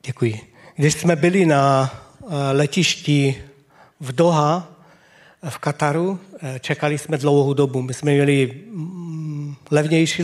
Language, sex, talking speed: Czech, male, 105 wpm